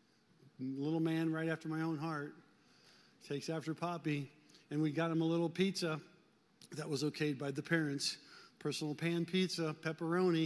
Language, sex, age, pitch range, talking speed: English, male, 50-69, 140-175 Hz, 160 wpm